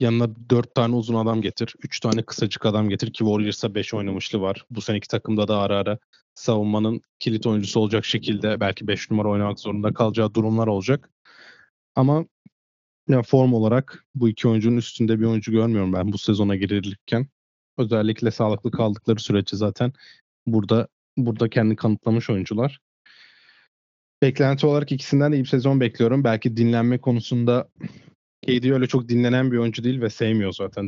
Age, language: 20-39, Turkish